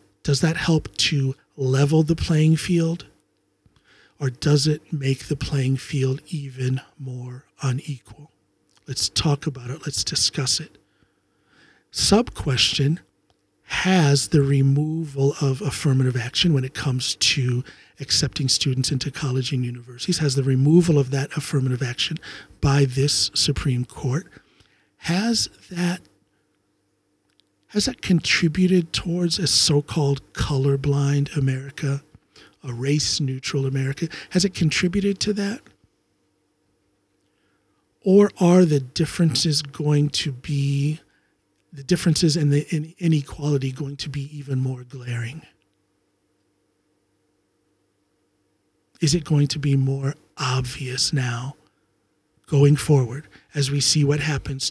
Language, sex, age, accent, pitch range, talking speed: English, male, 50-69, American, 135-155 Hz, 115 wpm